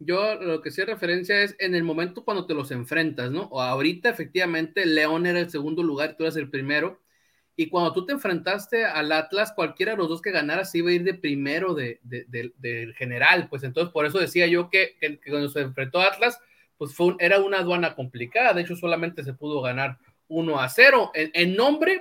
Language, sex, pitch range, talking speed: Spanish, male, 155-220 Hz, 225 wpm